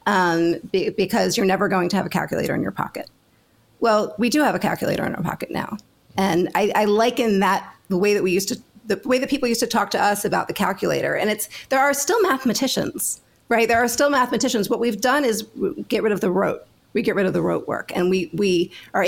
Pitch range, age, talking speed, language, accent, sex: 170-225 Hz, 40-59, 240 wpm, English, American, female